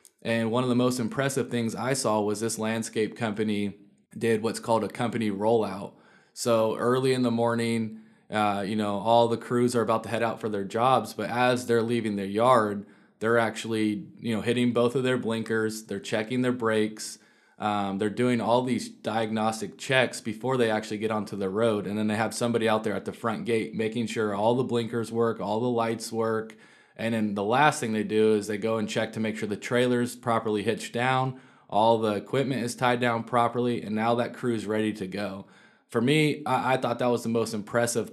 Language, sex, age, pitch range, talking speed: English, male, 20-39, 110-125 Hz, 210 wpm